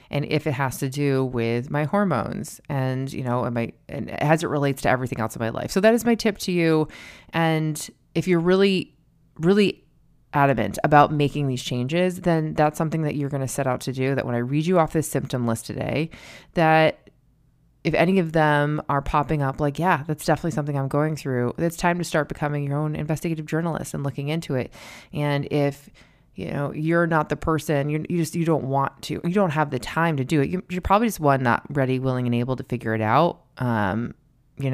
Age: 20-39